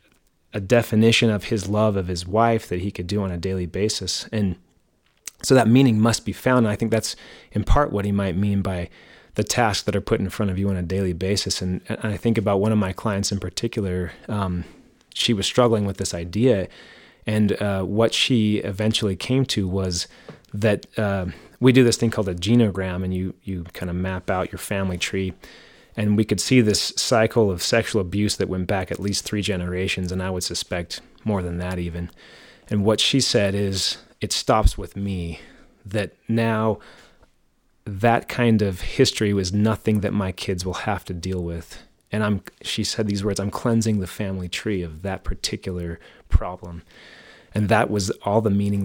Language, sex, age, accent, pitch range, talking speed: English, male, 30-49, American, 95-110 Hz, 200 wpm